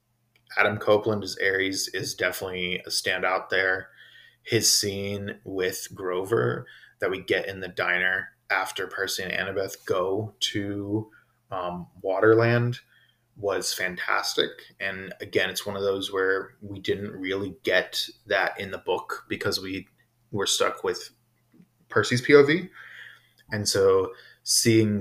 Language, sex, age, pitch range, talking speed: English, male, 20-39, 95-120 Hz, 130 wpm